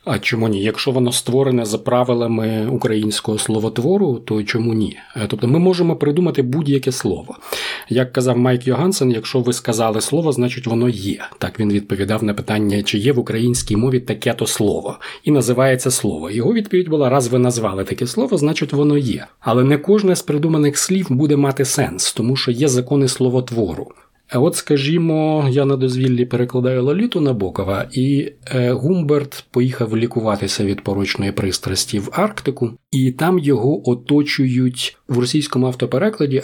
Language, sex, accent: Ukrainian, male, native